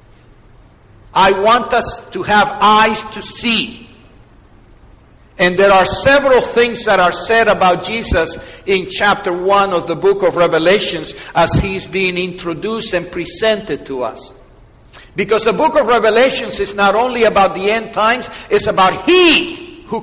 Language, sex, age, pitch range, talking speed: English, male, 60-79, 155-220 Hz, 150 wpm